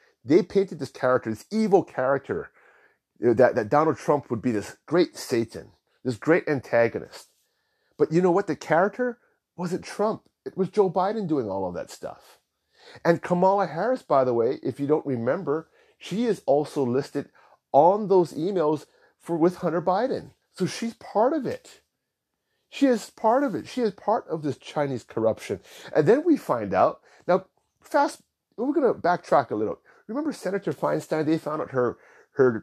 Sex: male